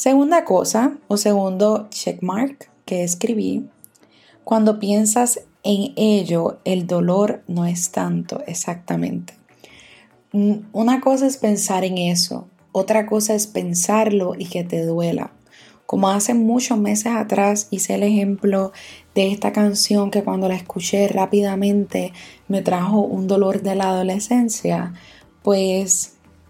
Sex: female